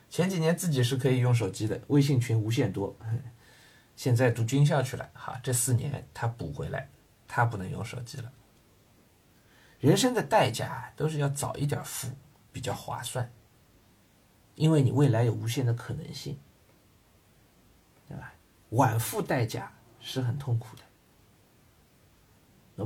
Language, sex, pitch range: Chinese, male, 115-145 Hz